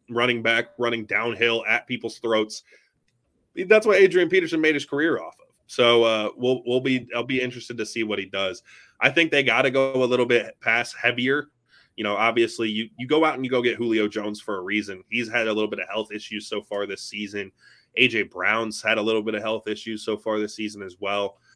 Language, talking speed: English, 230 wpm